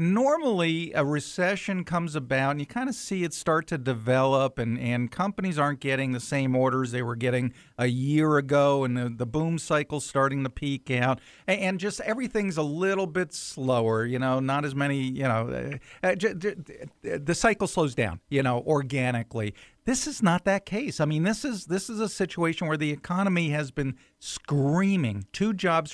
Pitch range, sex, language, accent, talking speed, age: 135-180 Hz, male, English, American, 185 wpm, 50-69